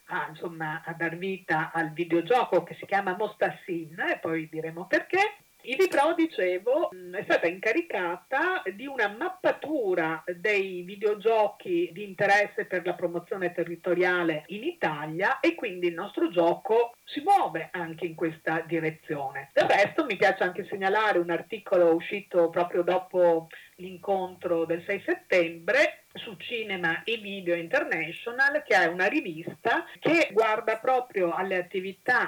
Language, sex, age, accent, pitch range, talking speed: Italian, female, 40-59, native, 170-230 Hz, 140 wpm